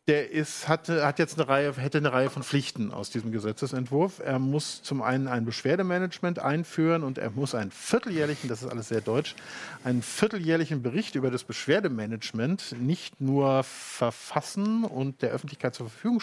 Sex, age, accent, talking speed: male, 50-69, German, 170 wpm